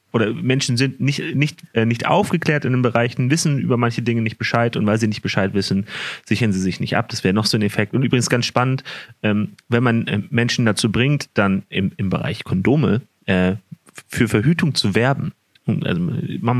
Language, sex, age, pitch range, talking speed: German, male, 30-49, 110-140 Hz, 200 wpm